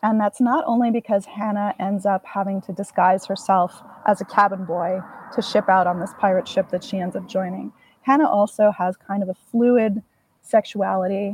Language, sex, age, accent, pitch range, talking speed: English, female, 20-39, American, 185-230 Hz, 190 wpm